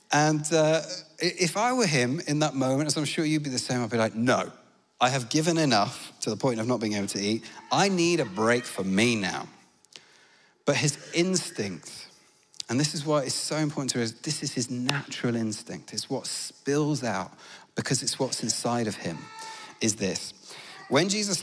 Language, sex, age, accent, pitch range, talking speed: English, male, 30-49, British, 115-150 Hz, 200 wpm